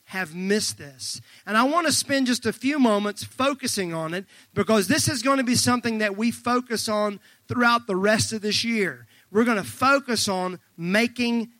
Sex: male